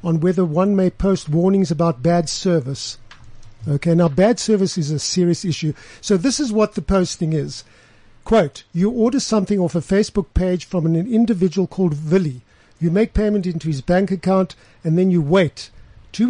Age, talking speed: 60-79, 180 wpm